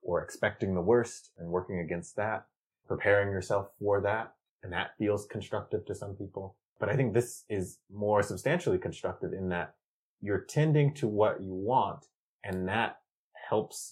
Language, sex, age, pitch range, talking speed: English, male, 30-49, 90-115 Hz, 165 wpm